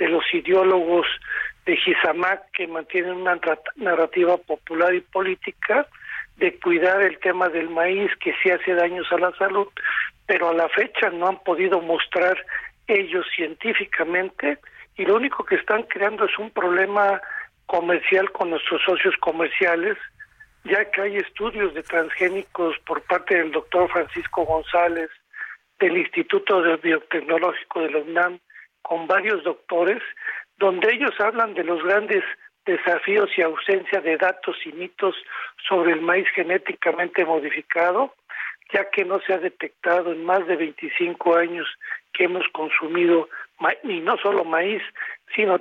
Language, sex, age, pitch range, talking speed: Spanish, male, 60-79, 170-210 Hz, 145 wpm